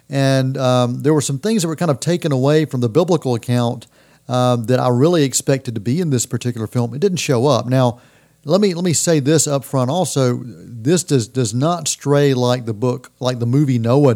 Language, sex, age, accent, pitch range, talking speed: English, male, 40-59, American, 120-145 Hz, 225 wpm